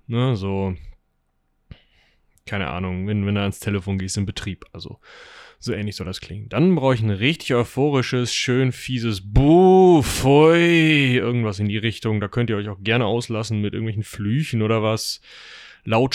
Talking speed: 165 wpm